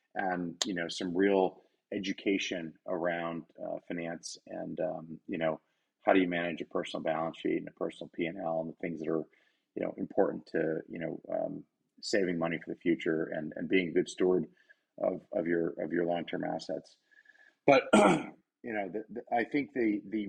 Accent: American